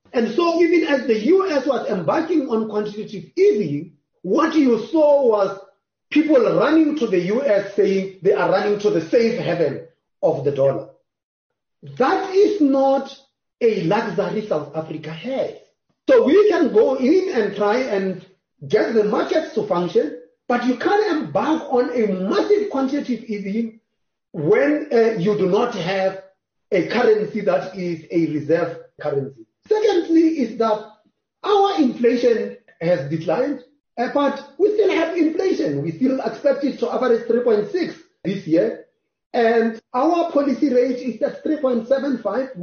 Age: 30-49